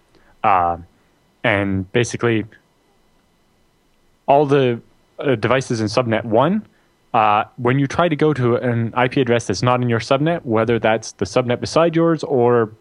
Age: 20-39